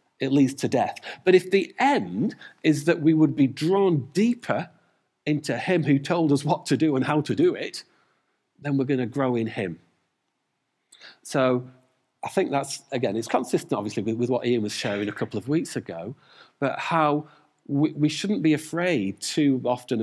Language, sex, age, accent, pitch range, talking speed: English, male, 40-59, British, 115-160 Hz, 190 wpm